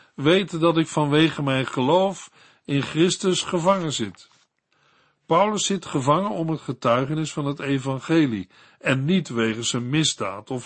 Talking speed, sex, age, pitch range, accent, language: 140 wpm, male, 60-79, 125-170 Hz, Dutch, Dutch